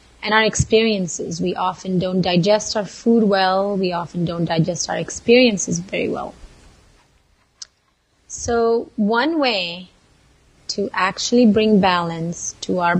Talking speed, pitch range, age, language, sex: 125 wpm, 175-215 Hz, 30-49, English, female